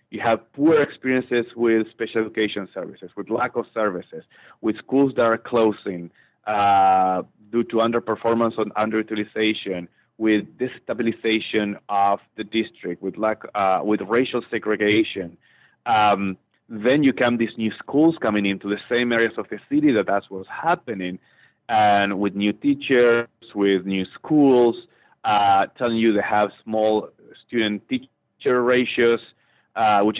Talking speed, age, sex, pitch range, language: 140 wpm, 30-49, male, 100-115 Hz, English